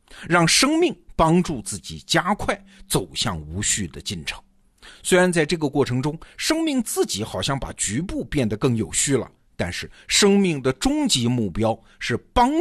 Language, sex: Chinese, male